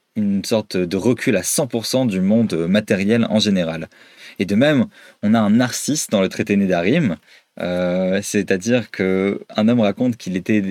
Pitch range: 105-140 Hz